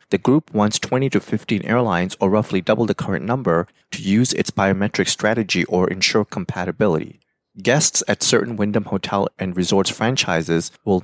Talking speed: 165 wpm